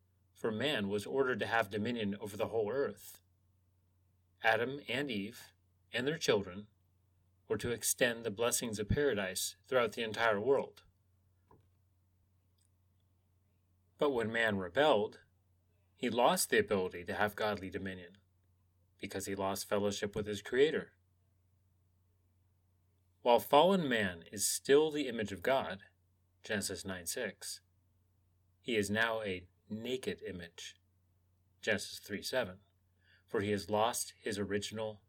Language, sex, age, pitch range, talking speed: English, male, 30-49, 90-105 Hz, 125 wpm